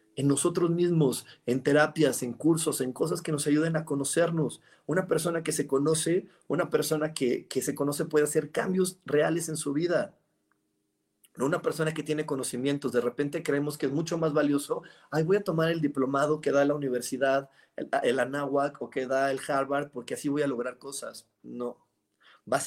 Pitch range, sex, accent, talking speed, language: 125-155 Hz, male, Mexican, 190 wpm, Spanish